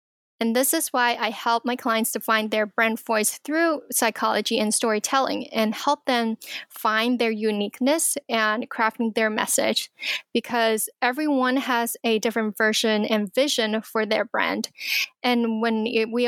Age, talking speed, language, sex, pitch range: 10-29, 150 wpm, English, female, 220-250 Hz